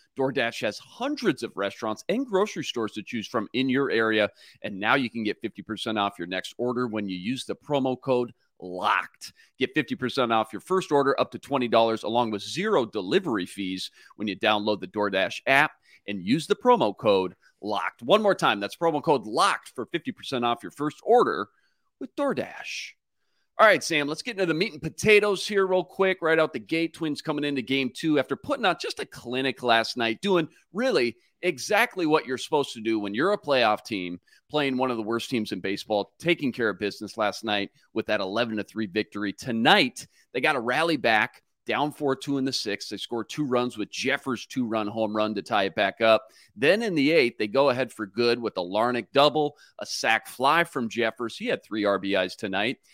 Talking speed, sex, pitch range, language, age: 205 wpm, male, 110-165 Hz, English, 40-59